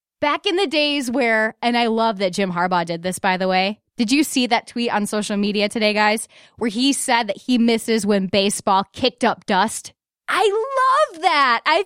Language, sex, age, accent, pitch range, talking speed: English, female, 10-29, American, 210-290 Hz, 205 wpm